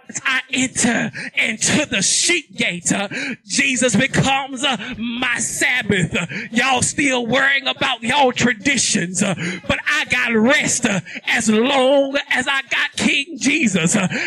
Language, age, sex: English, 20-39, male